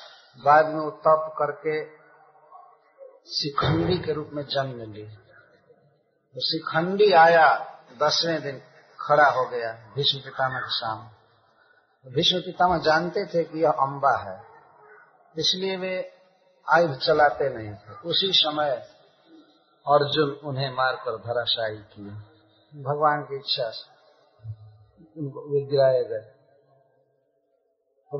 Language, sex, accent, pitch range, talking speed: Hindi, male, native, 130-160 Hz, 105 wpm